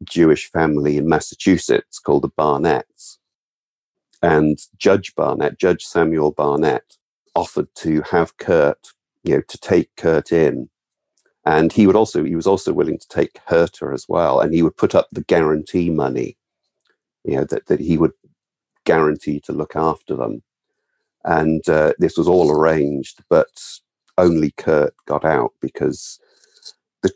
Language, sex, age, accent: English, male, 50-69, British